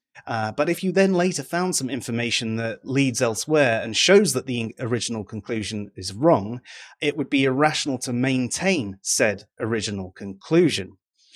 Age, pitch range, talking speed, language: 30-49, 110-165 Hz, 155 wpm, English